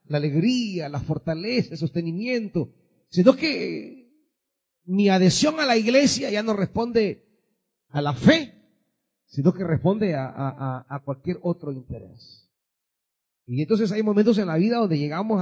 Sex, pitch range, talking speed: male, 150-220 Hz, 140 wpm